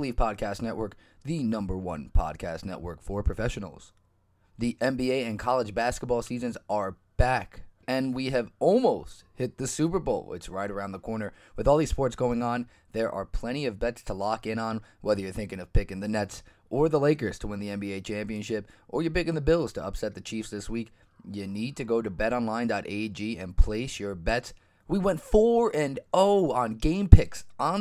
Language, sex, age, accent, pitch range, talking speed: English, male, 20-39, American, 105-135 Hz, 190 wpm